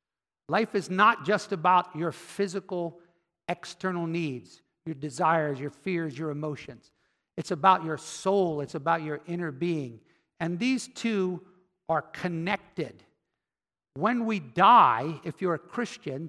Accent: American